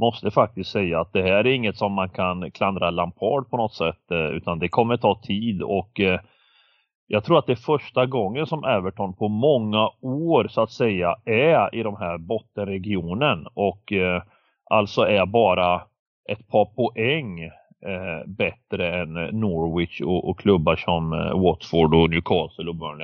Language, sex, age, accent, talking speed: Swedish, male, 30-49, native, 155 wpm